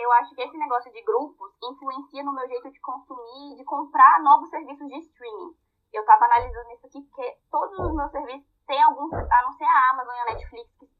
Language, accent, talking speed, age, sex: Portuguese, Brazilian, 220 wpm, 10-29, female